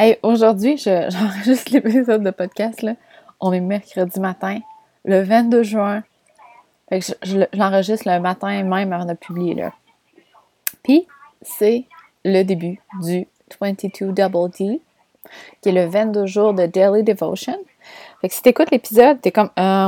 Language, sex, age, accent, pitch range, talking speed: French, female, 20-39, Canadian, 190-240 Hz, 155 wpm